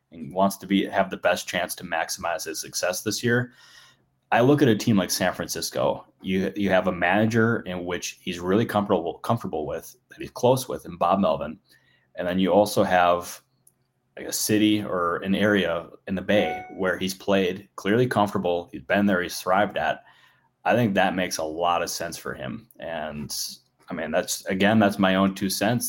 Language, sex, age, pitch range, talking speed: English, male, 20-39, 90-105 Hz, 200 wpm